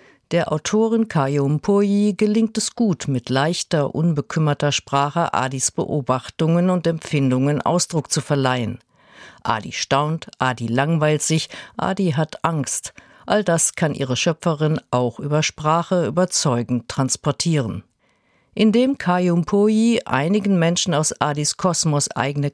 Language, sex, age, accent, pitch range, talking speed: German, female, 50-69, German, 140-180 Hz, 120 wpm